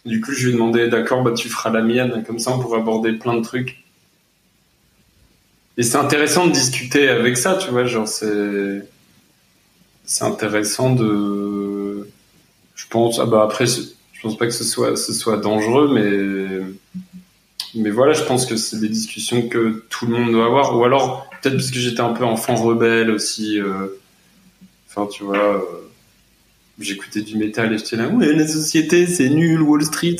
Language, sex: French, male